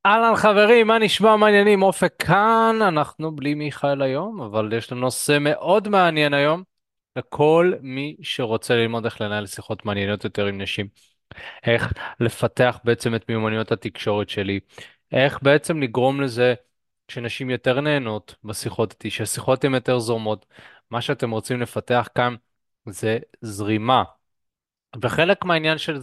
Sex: male